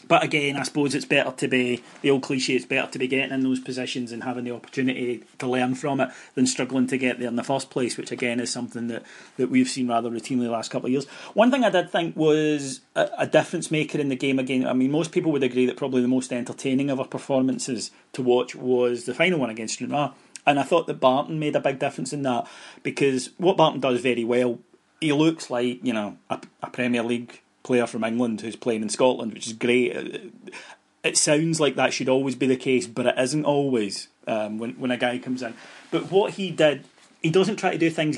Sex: male